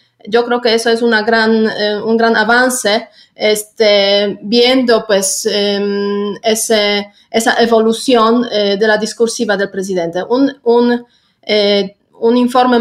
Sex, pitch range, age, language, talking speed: female, 215-245 Hz, 30-49, Spanish, 135 wpm